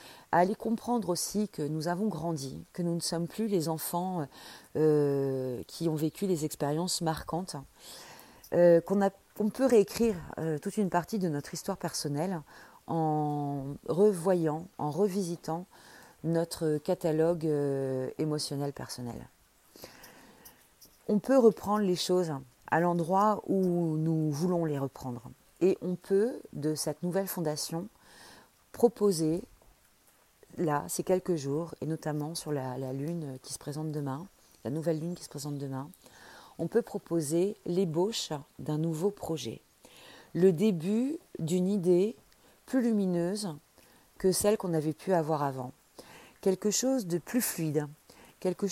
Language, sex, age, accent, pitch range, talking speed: French, female, 40-59, French, 155-200 Hz, 140 wpm